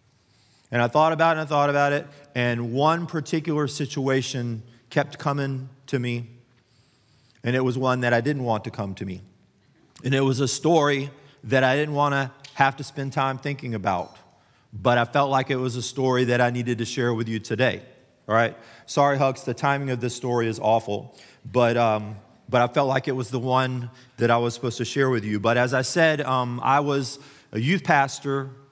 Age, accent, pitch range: 40-59, American, 120-140 Hz